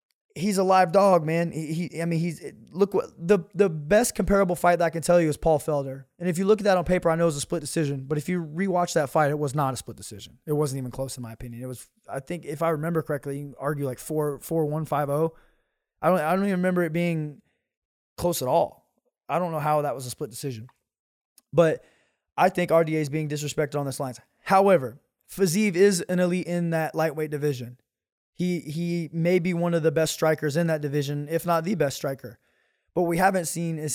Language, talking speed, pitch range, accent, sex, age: English, 245 wpm, 145-175 Hz, American, male, 20-39